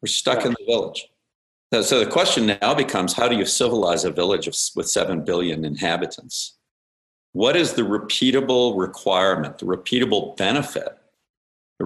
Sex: male